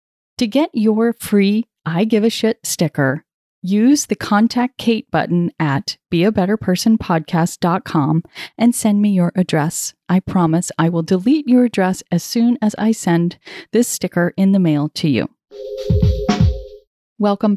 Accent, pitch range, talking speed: American, 175-235 Hz, 140 wpm